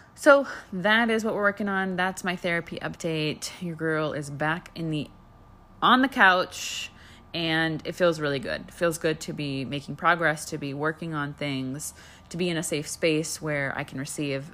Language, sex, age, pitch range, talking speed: English, female, 20-39, 145-185 Hz, 195 wpm